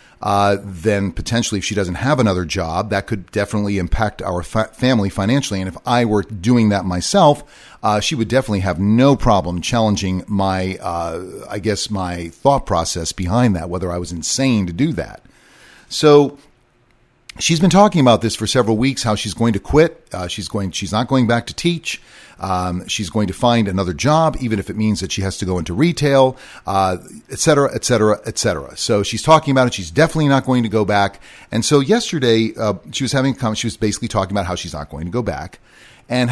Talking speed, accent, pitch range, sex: 215 wpm, American, 95-125 Hz, male